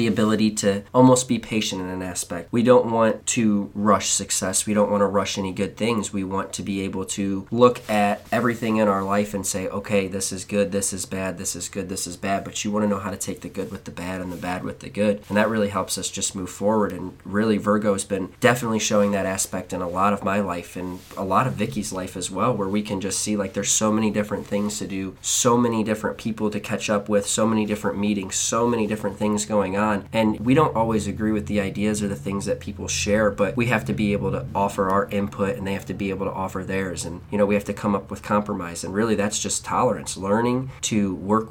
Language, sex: English, male